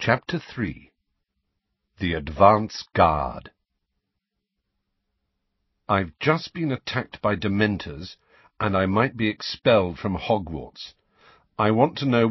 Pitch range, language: 85-115 Hz, English